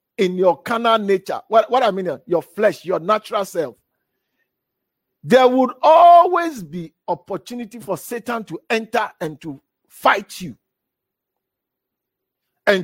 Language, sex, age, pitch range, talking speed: English, male, 50-69, 195-265 Hz, 125 wpm